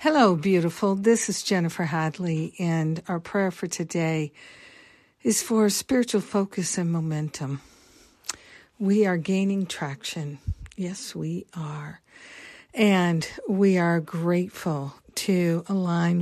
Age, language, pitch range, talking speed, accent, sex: 50-69, English, 155-190 Hz, 110 wpm, American, female